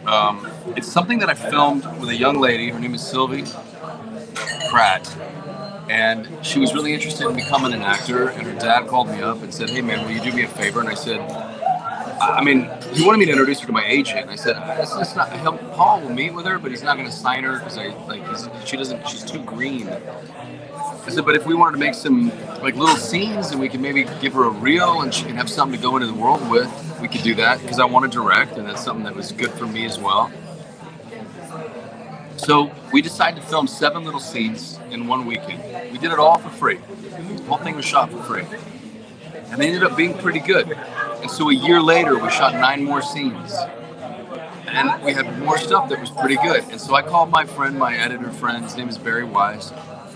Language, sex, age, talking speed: English, male, 30-49, 230 wpm